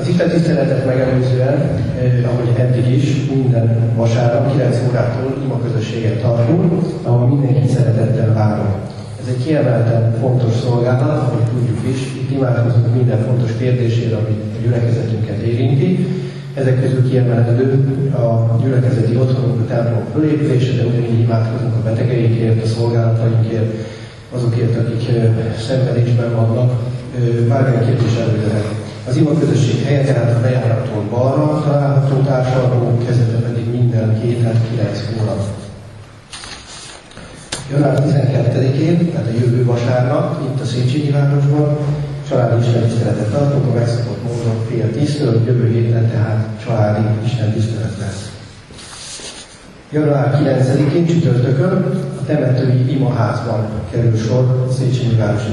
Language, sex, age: Hungarian, male, 30-49